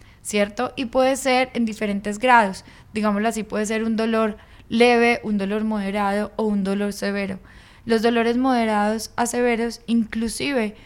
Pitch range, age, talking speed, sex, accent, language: 200-230 Hz, 10-29, 150 wpm, female, Colombian, Spanish